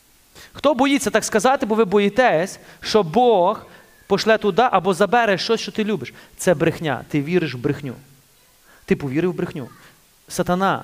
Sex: male